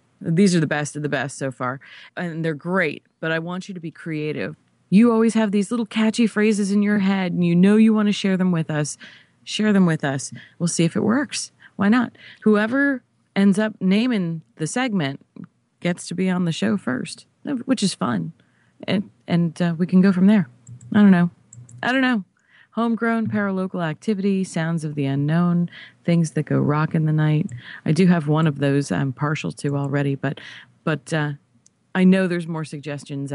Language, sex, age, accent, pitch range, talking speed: English, female, 30-49, American, 145-195 Hz, 200 wpm